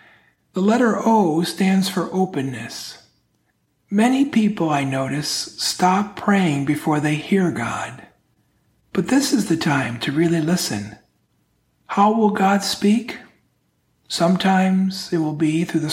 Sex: male